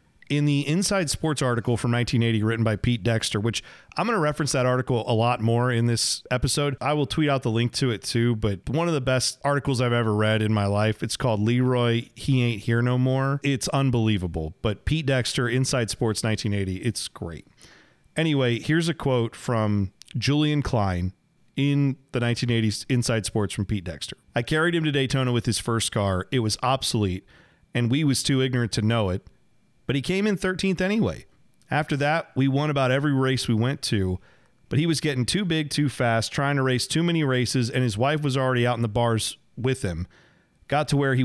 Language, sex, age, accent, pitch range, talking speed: English, male, 40-59, American, 115-140 Hz, 210 wpm